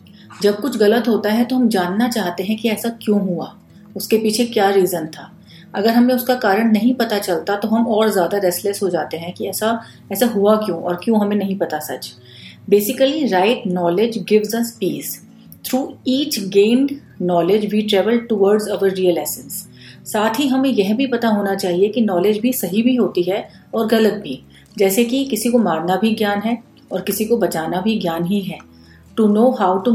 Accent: native